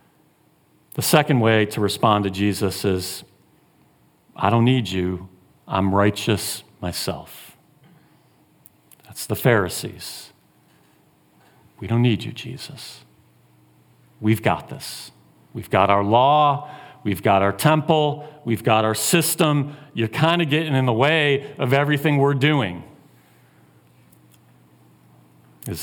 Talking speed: 115 wpm